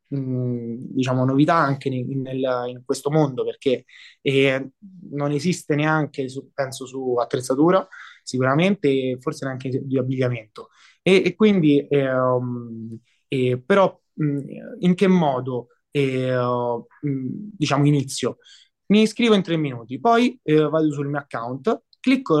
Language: Italian